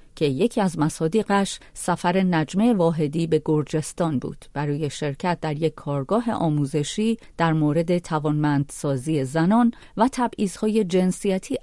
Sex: female